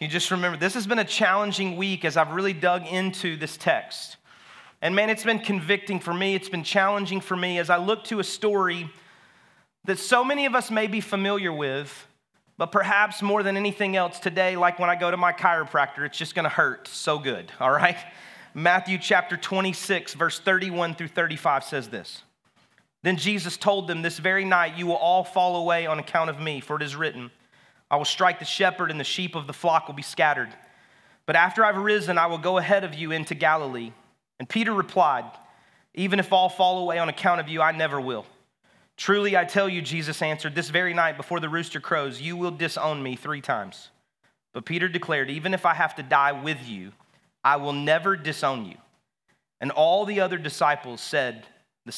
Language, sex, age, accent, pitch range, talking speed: English, male, 30-49, American, 155-190 Hz, 205 wpm